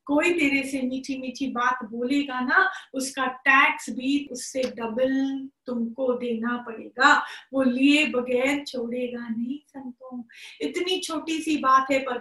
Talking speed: 125 wpm